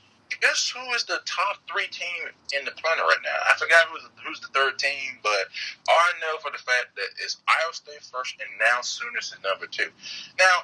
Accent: American